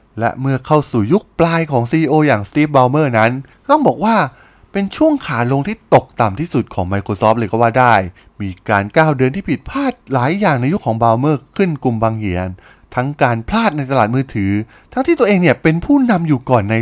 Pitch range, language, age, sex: 110-170 Hz, Thai, 20-39, male